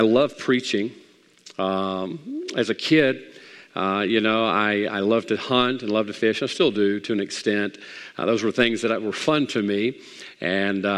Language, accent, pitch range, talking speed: English, American, 110-130 Hz, 190 wpm